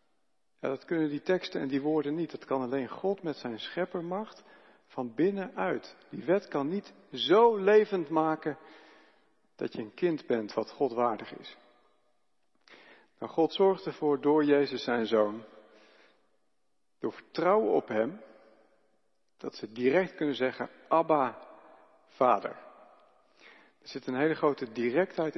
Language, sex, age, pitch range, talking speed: Dutch, male, 50-69, 125-160 Hz, 135 wpm